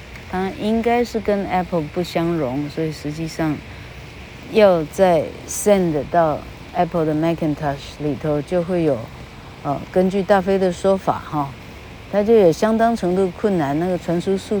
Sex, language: female, Chinese